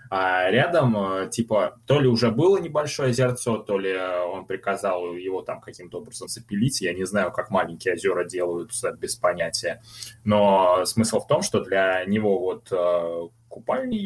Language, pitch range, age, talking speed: Russian, 95-120 Hz, 20-39, 155 wpm